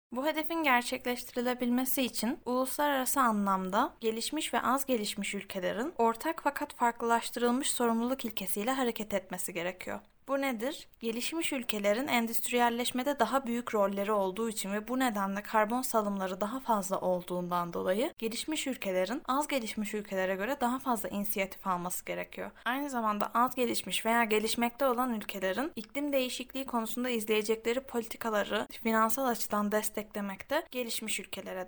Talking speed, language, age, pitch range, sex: 130 wpm, Turkish, 10-29, 205-255 Hz, female